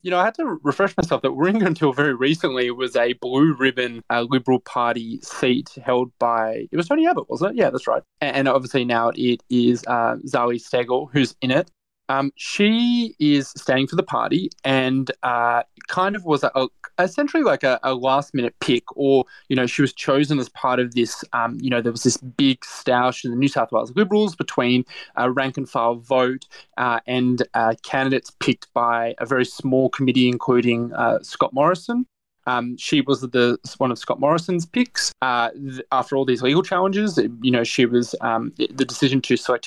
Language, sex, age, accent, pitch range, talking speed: English, male, 20-39, Australian, 125-150 Hz, 195 wpm